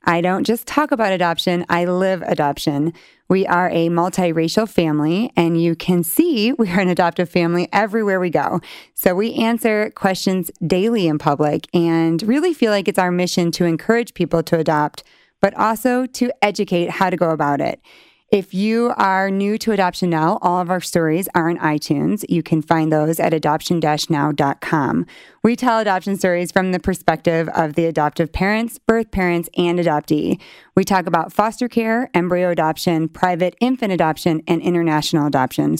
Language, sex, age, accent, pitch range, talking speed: English, female, 20-39, American, 165-205 Hz, 170 wpm